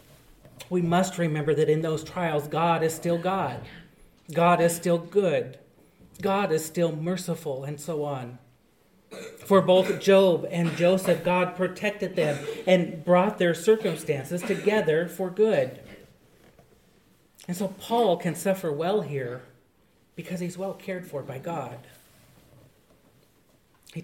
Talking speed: 130 wpm